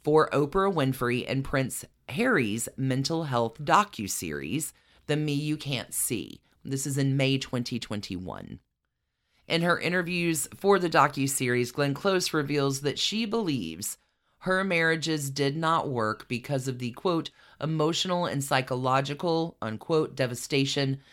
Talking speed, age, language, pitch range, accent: 130 wpm, 30-49, English, 125-155 Hz, American